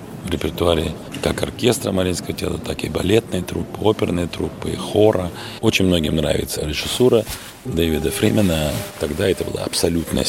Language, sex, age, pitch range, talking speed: Russian, male, 40-59, 80-100 Hz, 135 wpm